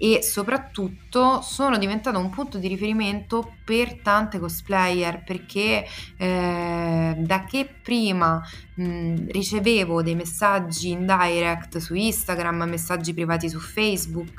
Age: 20-39